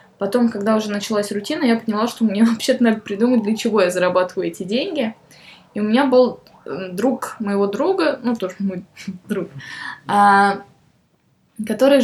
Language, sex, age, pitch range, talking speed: Russian, female, 10-29, 190-235 Hz, 150 wpm